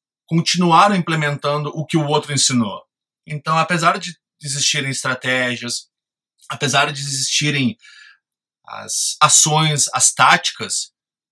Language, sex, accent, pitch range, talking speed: Portuguese, male, Brazilian, 130-165 Hz, 100 wpm